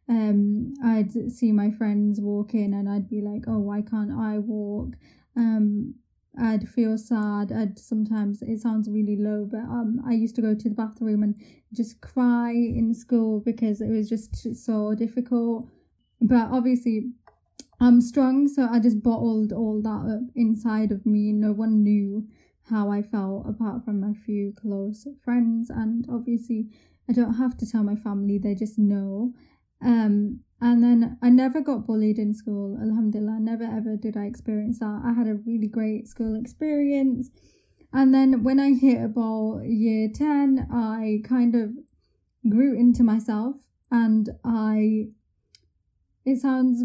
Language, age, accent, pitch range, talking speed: English, 20-39, British, 215-240 Hz, 160 wpm